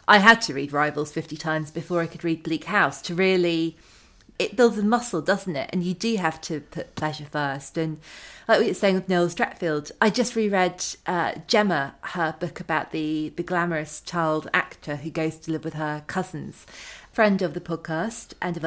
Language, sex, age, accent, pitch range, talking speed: English, female, 30-49, British, 160-195 Hz, 200 wpm